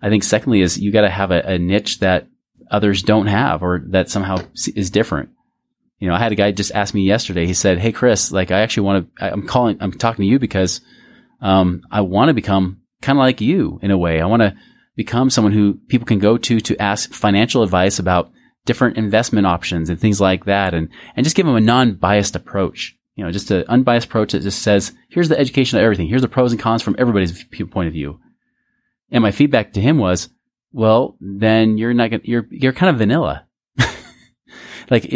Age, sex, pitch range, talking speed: 30-49, male, 95-125 Hz, 220 wpm